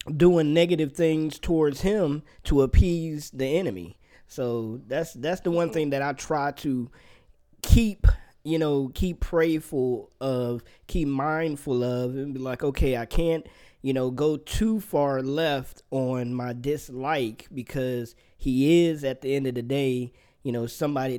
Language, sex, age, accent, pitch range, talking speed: English, male, 20-39, American, 125-155 Hz, 155 wpm